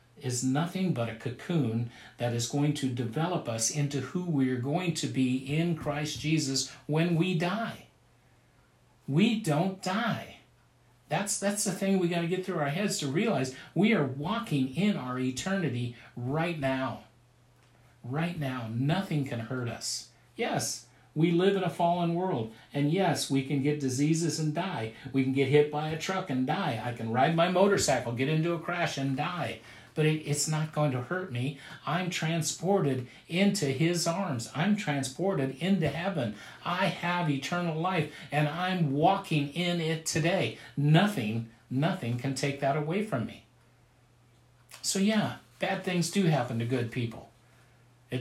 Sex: male